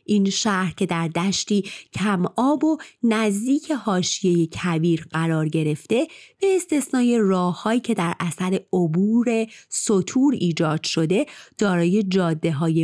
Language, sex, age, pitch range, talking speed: Persian, female, 30-49, 175-230 Hz, 115 wpm